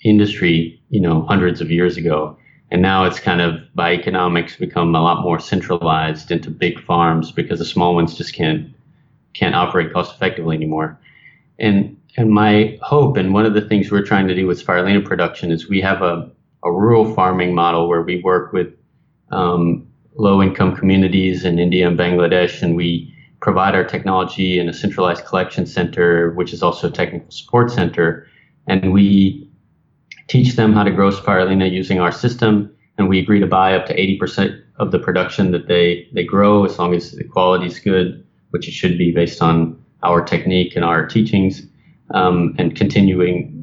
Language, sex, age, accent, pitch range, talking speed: English, male, 30-49, American, 85-100 Hz, 185 wpm